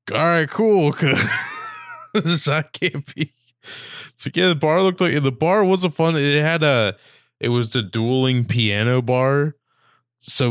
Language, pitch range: English, 105-135 Hz